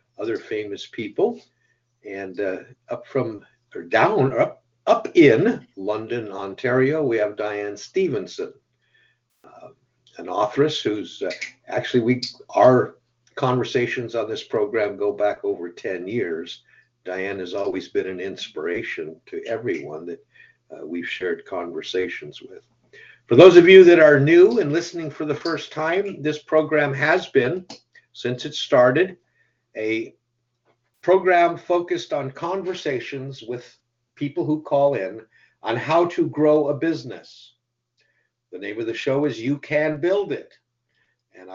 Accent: American